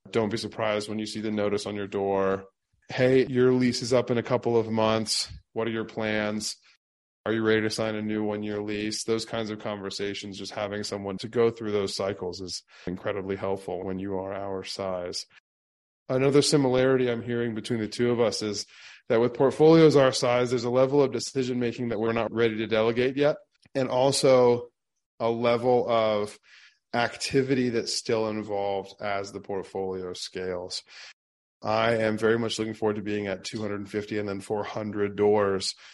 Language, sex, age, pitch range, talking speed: English, male, 20-39, 100-120 Hz, 180 wpm